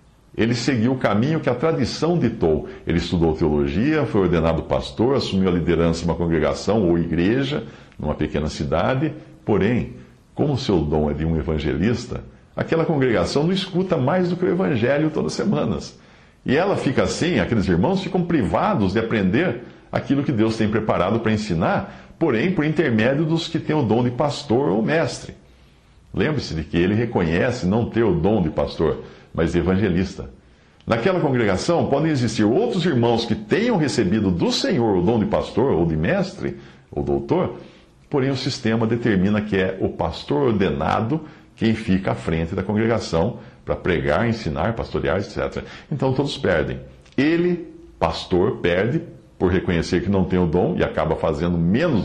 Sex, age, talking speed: male, 60-79, 165 wpm